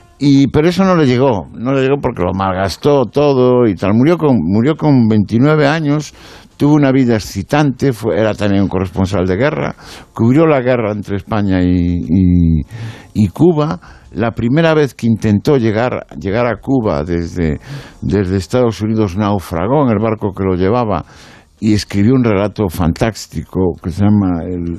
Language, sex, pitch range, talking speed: Spanish, male, 95-135 Hz, 170 wpm